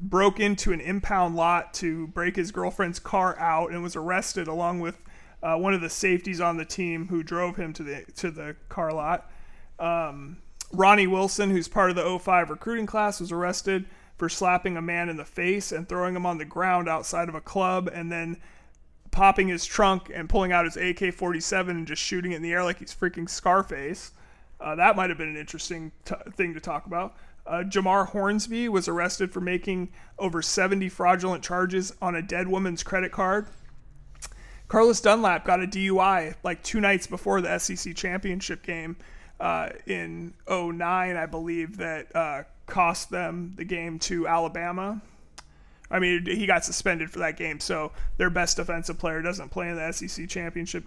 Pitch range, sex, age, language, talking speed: 165-190 Hz, male, 30-49, English, 185 wpm